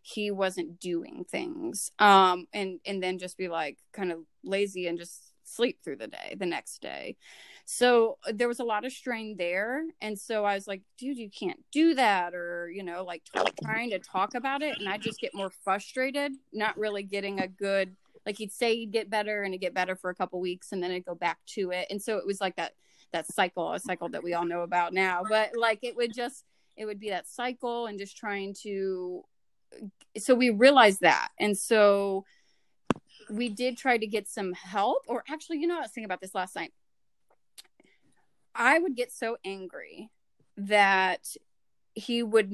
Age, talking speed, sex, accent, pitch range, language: 30-49, 210 wpm, female, American, 190-240 Hz, English